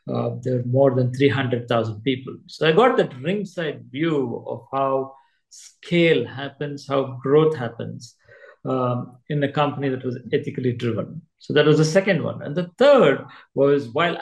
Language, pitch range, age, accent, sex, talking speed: English, 130-165 Hz, 50-69, Indian, male, 165 wpm